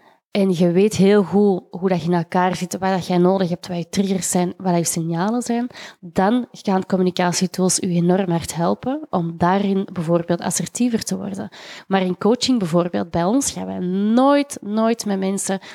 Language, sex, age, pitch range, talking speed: Dutch, female, 20-39, 180-220 Hz, 180 wpm